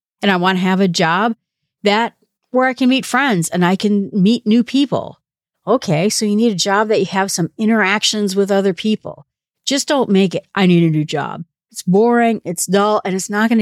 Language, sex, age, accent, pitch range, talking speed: English, female, 50-69, American, 175-220 Hz, 220 wpm